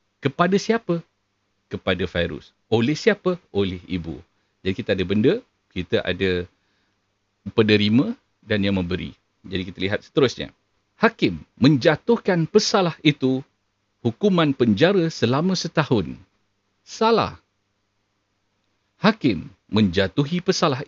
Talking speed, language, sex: 100 wpm, Malay, male